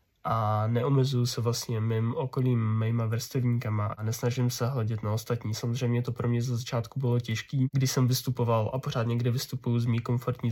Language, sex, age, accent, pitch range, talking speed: Czech, male, 10-29, native, 115-130 Hz, 185 wpm